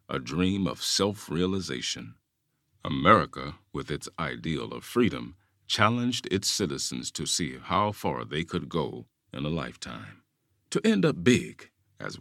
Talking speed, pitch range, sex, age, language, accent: 140 wpm, 75-120 Hz, male, 50-69, English, American